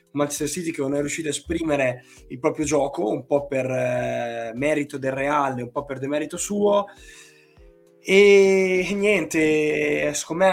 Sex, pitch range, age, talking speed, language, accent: male, 130-150 Hz, 20-39, 150 wpm, Italian, native